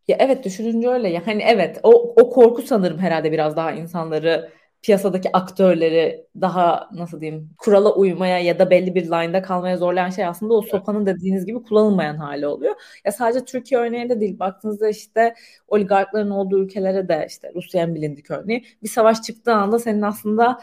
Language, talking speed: Turkish, 170 wpm